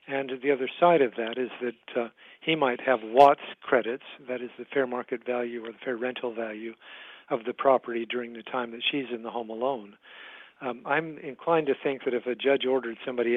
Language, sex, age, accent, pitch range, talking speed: English, male, 50-69, American, 120-145 Hz, 215 wpm